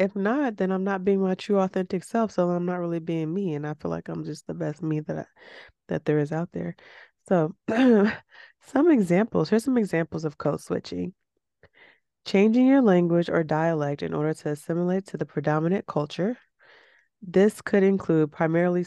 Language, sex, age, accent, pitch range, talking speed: English, female, 20-39, American, 150-190 Hz, 185 wpm